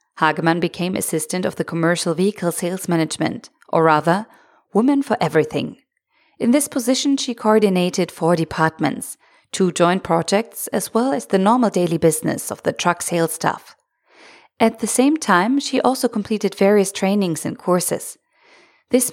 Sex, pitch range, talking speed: female, 165-230 Hz, 150 wpm